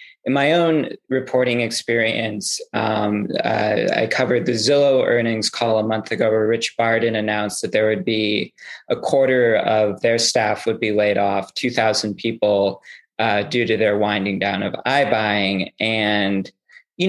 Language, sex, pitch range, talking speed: English, male, 105-125 Hz, 160 wpm